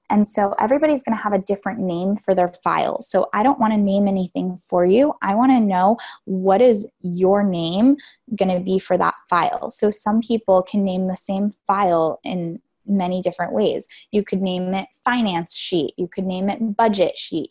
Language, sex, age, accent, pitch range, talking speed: English, female, 20-39, American, 185-220 Hz, 200 wpm